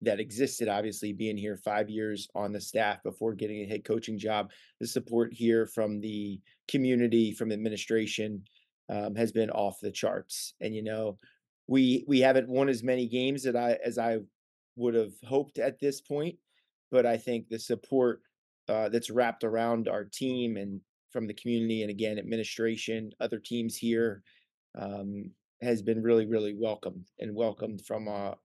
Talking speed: 170 wpm